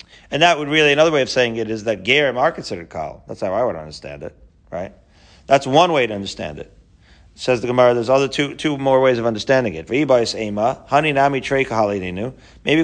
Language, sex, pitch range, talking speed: English, male, 110-150 Hz, 190 wpm